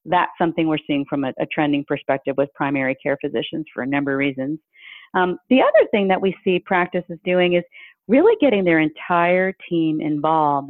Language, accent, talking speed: English, American, 190 wpm